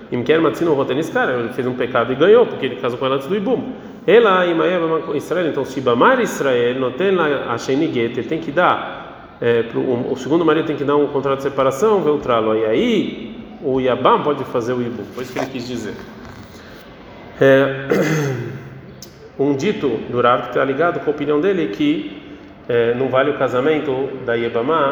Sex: male